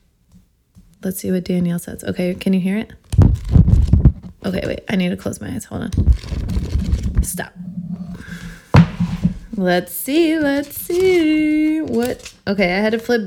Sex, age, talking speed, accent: female, 20-39, 140 wpm, American